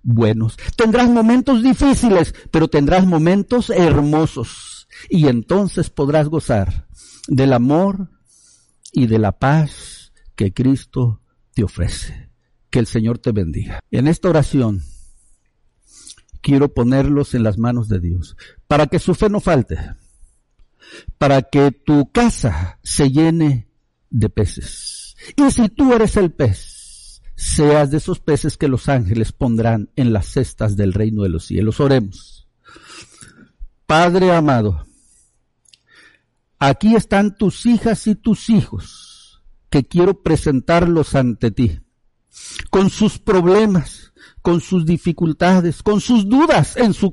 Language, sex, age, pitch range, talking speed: Spanish, male, 60-79, 115-180 Hz, 125 wpm